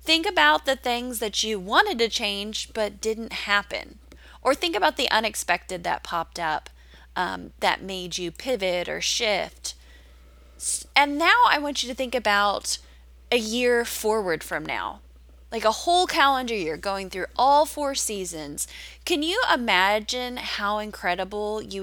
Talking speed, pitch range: 155 wpm, 180-255 Hz